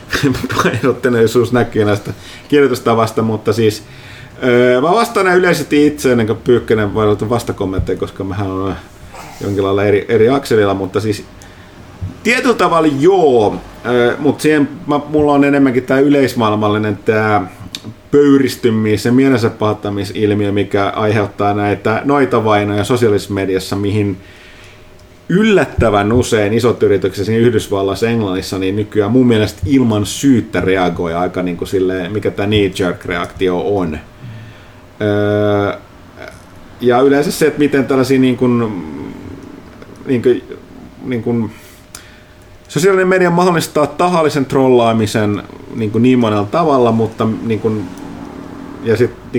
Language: Finnish